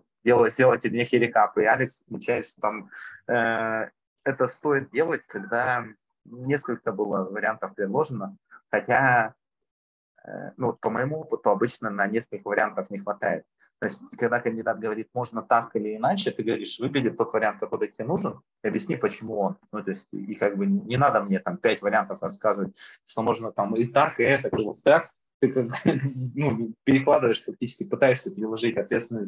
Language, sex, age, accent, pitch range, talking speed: Russian, male, 30-49, native, 110-145 Hz, 165 wpm